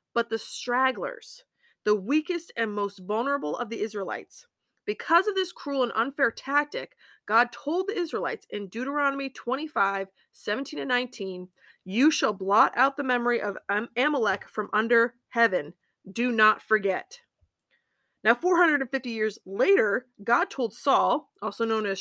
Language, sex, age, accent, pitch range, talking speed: English, female, 30-49, American, 210-290 Hz, 140 wpm